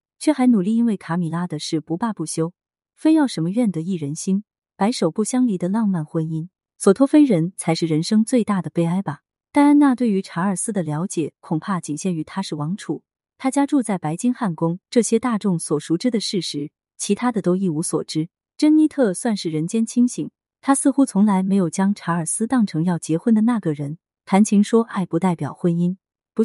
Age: 20-39